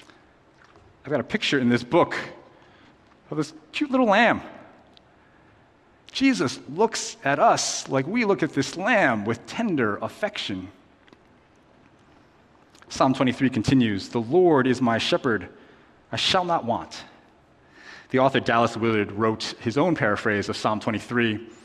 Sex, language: male, English